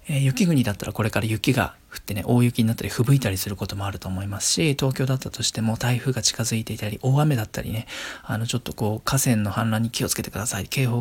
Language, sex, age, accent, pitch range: Japanese, male, 40-59, native, 110-145 Hz